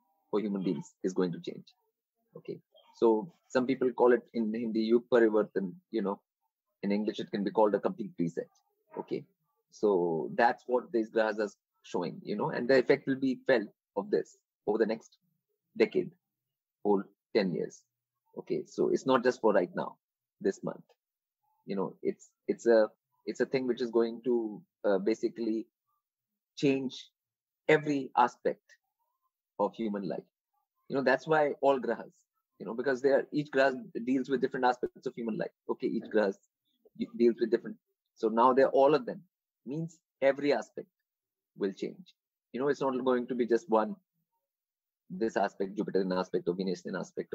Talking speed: 170 wpm